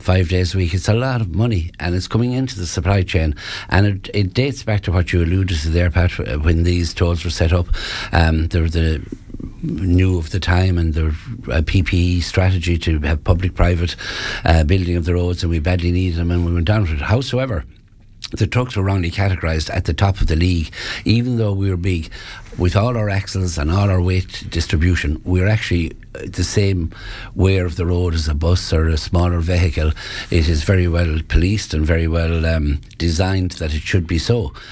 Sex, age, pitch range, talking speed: male, 60-79, 85-100 Hz, 210 wpm